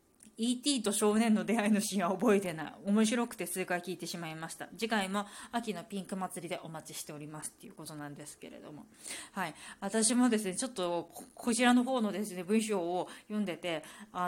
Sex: female